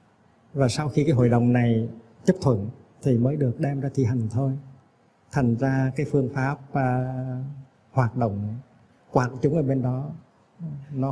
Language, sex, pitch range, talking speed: Vietnamese, male, 125-150 Hz, 165 wpm